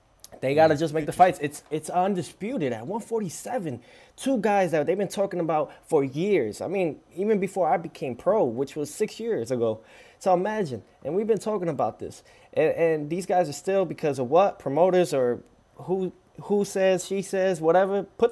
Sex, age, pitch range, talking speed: male, 20-39, 145-185 Hz, 195 wpm